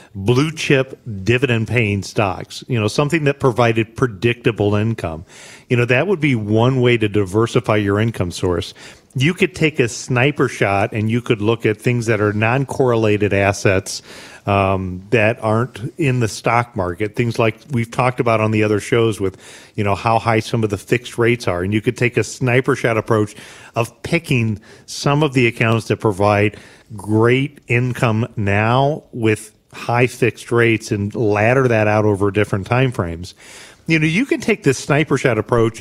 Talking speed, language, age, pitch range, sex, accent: 175 wpm, English, 40-59, 110-135 Hz, male, American